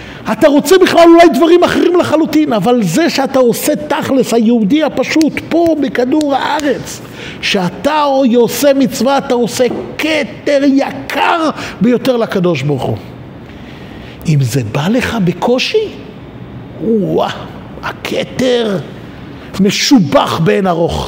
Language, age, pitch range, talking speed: Hebrew, 50-69, 240-345 Hz, 110 wpm